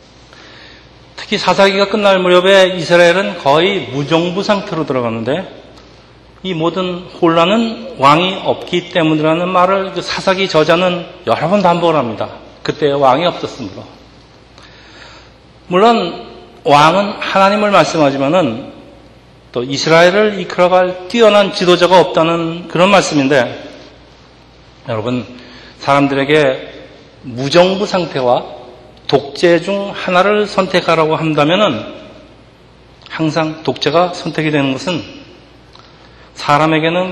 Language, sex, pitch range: Korean, male, 135-180 Hz